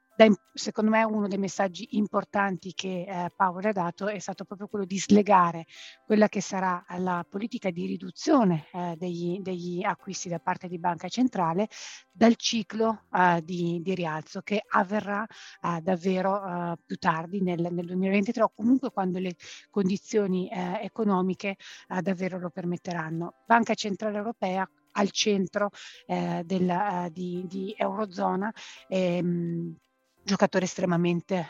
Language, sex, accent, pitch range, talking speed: Italian, female, native, 175-200 Hz, 135 wpm